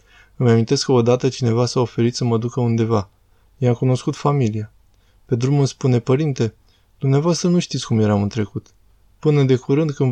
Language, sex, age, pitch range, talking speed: Romanian, male, 20-39, 110-135 Hz, 180 wpm